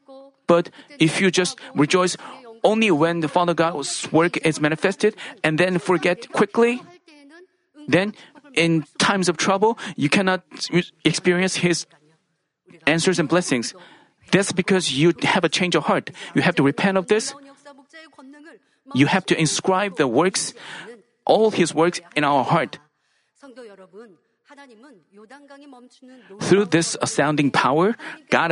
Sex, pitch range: male, 145-215 Hz